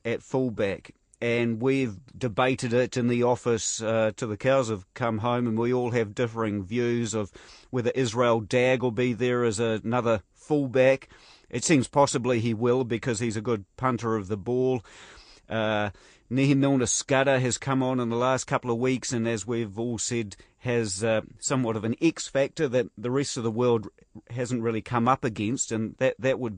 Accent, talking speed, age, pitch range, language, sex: Australian, 190 wpm, 40-59, 110-125 Hz, English, male